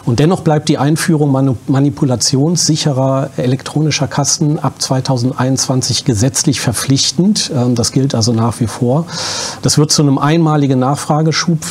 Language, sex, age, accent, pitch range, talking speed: German, male, 40-59, German, 125-150 Hz, 125 wpm